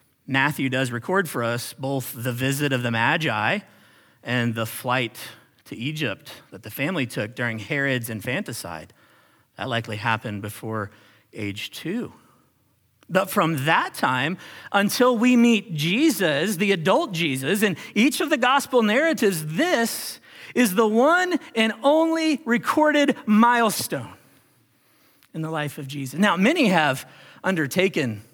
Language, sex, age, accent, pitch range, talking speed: English, male, 40-59, American, 130-195 Hz, 135 wpm